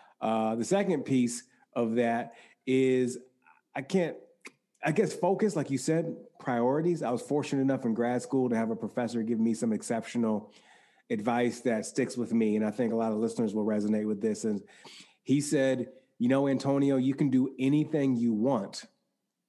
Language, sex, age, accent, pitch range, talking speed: English, male, 30-49, American, 120-150 Hz, 180 wpm